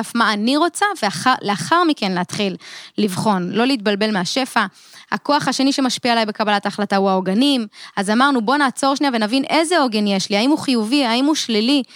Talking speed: 175 wpm